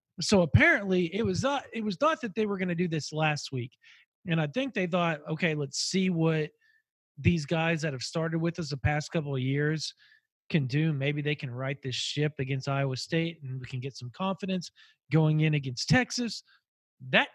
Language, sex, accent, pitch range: English, male, American, 140-185 Hz